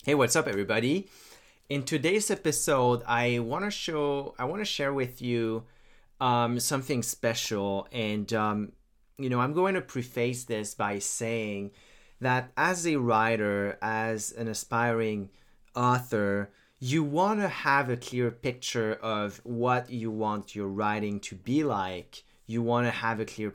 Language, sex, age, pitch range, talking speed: English, male, 30-49, 110-135 Hz, 155 wpm